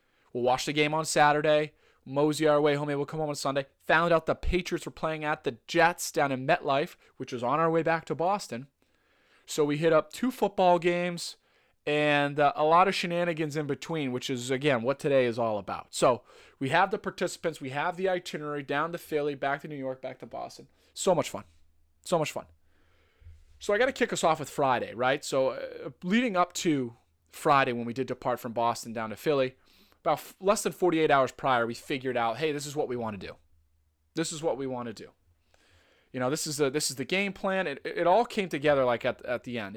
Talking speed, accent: 230 wpm, American